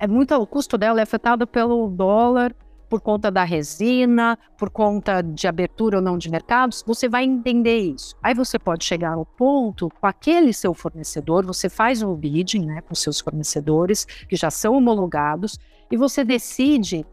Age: 50-69